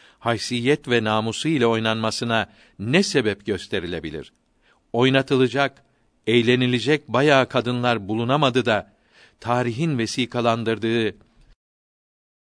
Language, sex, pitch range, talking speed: Turkish, male, 110-130 Hz, 75 wpm